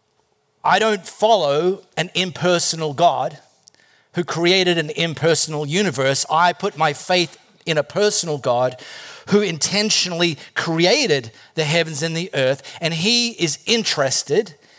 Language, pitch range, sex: English, 160-240 Hz, male